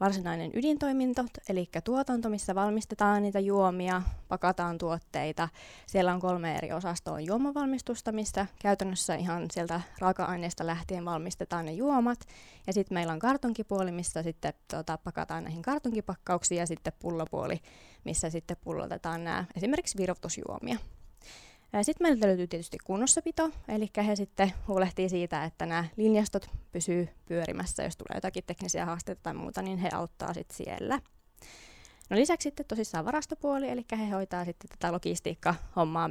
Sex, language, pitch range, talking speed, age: female, Finnish, 170-215 Hz, 135 wpm, 20-39